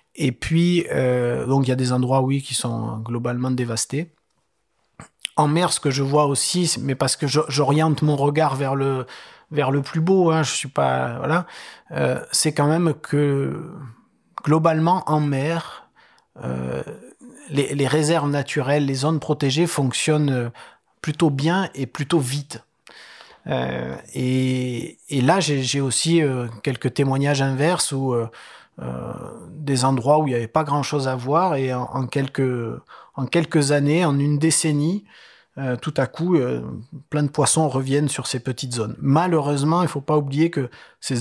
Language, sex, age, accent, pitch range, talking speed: French, male, 30-49, French, 130-155 Hz, 165 wpm